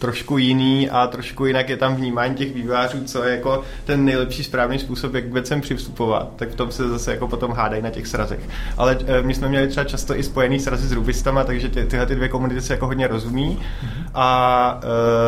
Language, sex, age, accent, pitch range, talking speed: Czech, male, 20-39, native, 120-140 Hz, 205 wpm